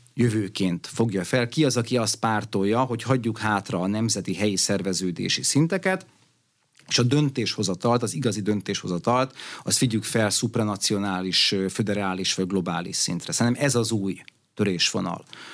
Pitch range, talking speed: 100-125 Hz, 145 wpm